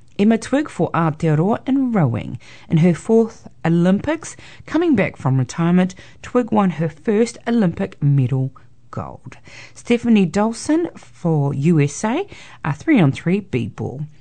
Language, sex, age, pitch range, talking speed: English, female, 40-59, 140-220 Hz, 120 wpm